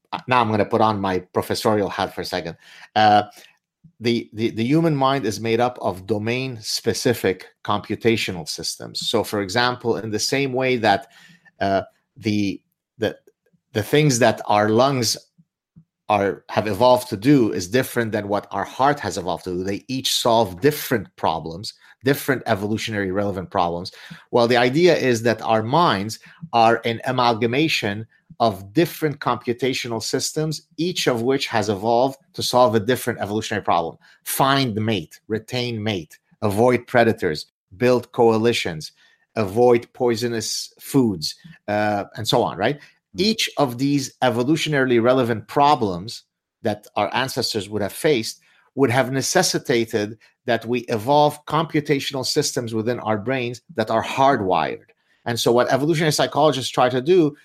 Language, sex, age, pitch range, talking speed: English, male, 30-49, 110-135 Hz, 145 wpm